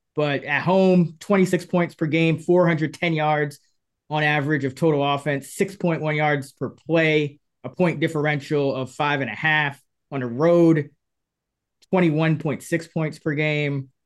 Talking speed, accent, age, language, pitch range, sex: 140 wpm, American, 20-39, English, 135-165 Hz, male